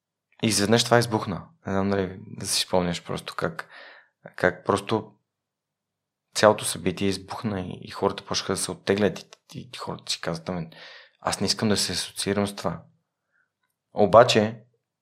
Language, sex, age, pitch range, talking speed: Bulgarian, male, 20-39, 95-110 Hz, 155 wpm